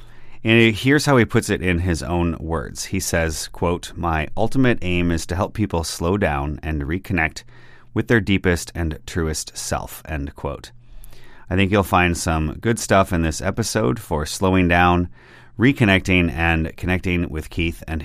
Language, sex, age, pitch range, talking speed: English, male, 30-49, 85-105 Hz, 170 wpm